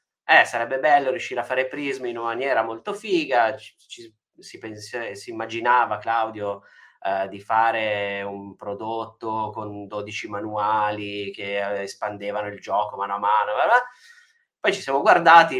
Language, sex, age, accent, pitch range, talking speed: Italian, male, 20-39, native, 105-140 Hz, 155 wpm